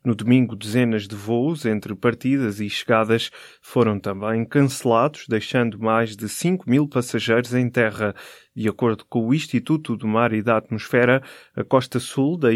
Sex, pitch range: male, 110-125 Hz